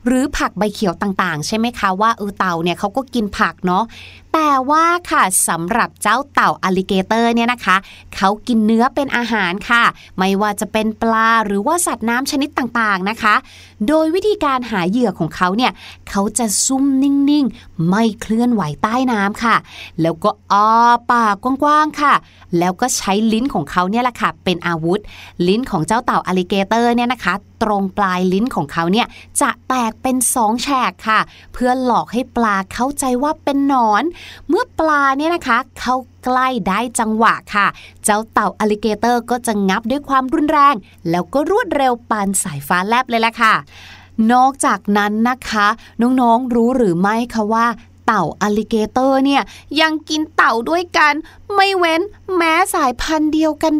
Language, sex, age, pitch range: Thai, female, 20-39, 210-280 Hz